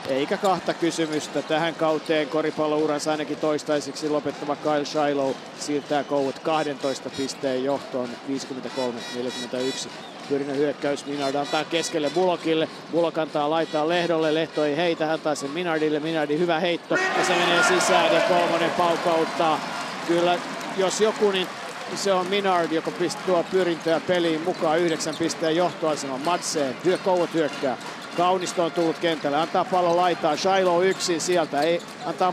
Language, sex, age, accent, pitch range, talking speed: Finnish, male, 50-69, native, 150-180 Hz, 130 wpm